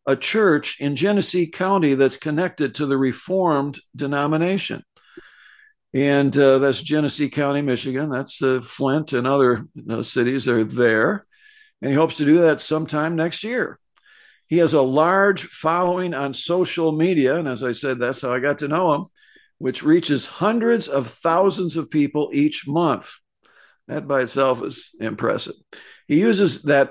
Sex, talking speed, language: male, 165 wpm, English